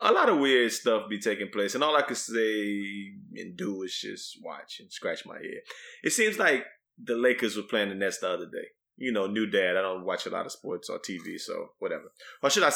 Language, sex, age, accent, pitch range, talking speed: English, male, 20-39, American, 100-165 Hz, 245 wpm